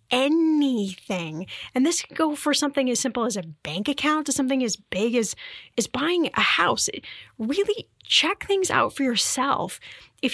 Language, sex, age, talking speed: English, female, 10-29, 170 wpm